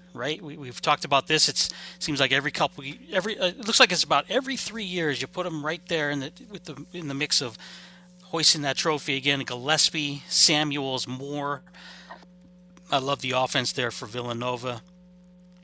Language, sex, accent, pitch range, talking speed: English, male, American, 130-180 Hz, 185 wpm